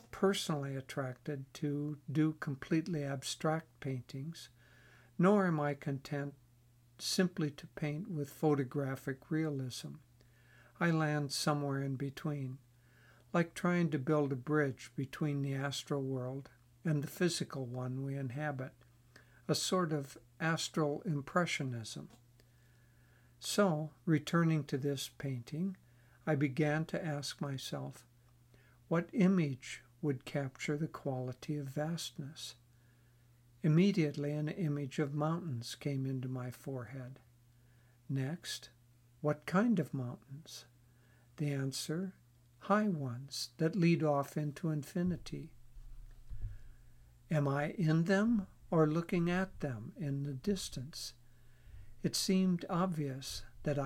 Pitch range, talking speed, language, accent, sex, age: 120-155 Hz, 110 wpm, English, American, male, 60-79